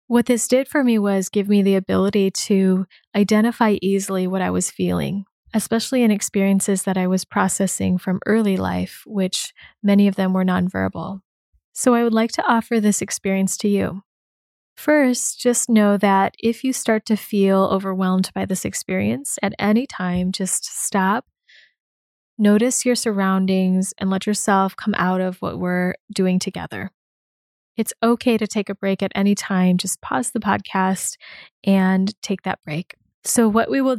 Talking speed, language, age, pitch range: 170 wpm, English, 20-39, 190-220 Hz